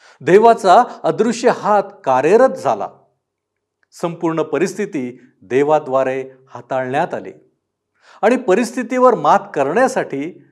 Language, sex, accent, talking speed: Marathi, male, native, 80 wpm